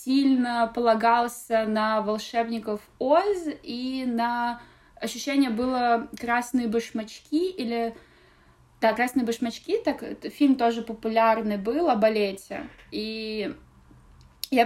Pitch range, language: 220-265 Hz, Russian